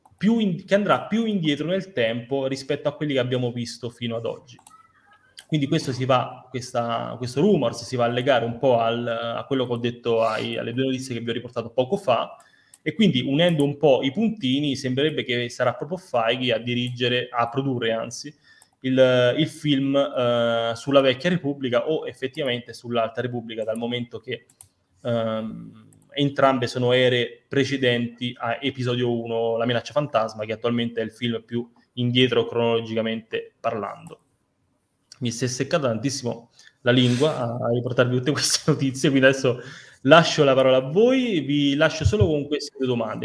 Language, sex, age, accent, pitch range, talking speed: Italian, male, 20-39, native, 120-140 Hz, 170 wpm